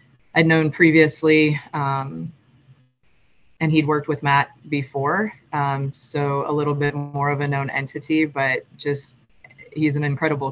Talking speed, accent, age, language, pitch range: 145 wpm, American, 20-39, English, 130-145 Hz